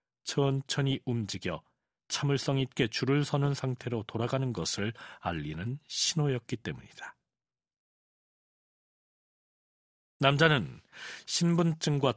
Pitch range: 120-150 Hz